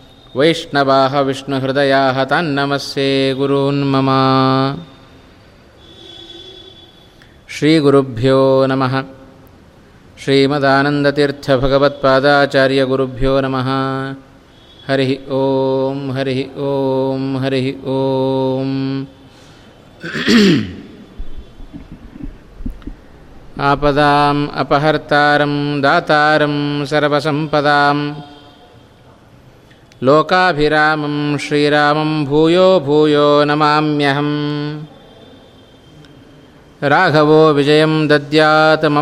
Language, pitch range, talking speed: Kannada, 135-150 Hz, 35 wpm